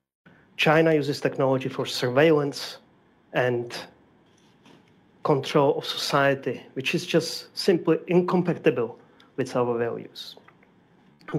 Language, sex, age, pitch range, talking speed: English, male, 30-49, 120-145 Hz, 95 wpm